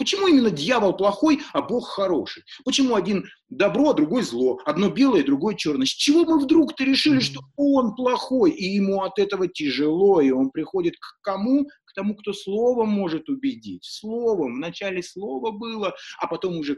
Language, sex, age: Russian, male, 30-49